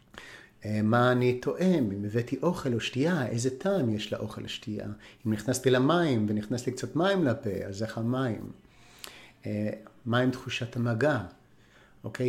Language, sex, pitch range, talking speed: Hebrew, male, 110-150 Hz, 135 wpm